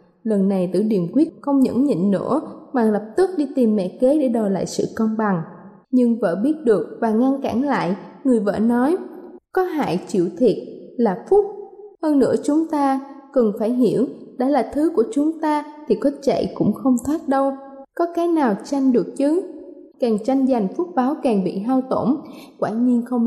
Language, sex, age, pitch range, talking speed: Vietnamese, female, 20-39, 215-280 Hz, 200 wpm